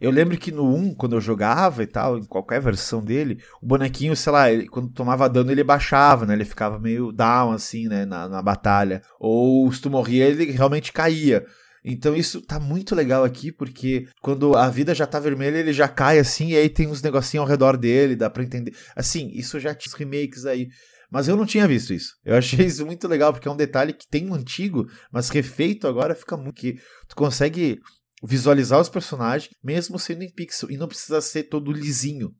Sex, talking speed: male, 215 wpm